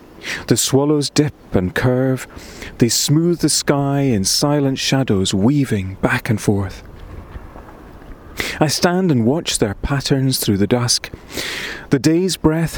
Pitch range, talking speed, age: 105-150 Hz, 130 wpm, 30-49